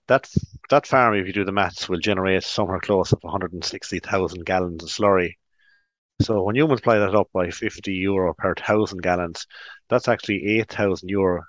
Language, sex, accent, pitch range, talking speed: English, male, Irish, 90-105 Hz, 170 wpm